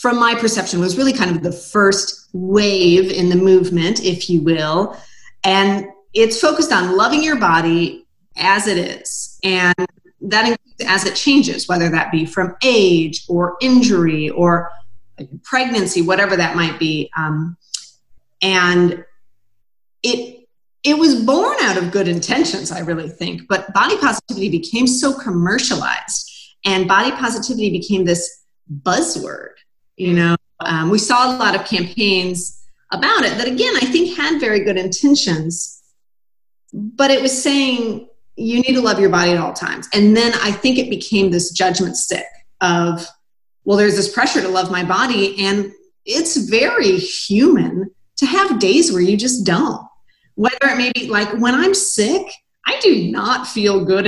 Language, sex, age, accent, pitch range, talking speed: English, female, 30-49, American, 175-245 Hz, 160 wpm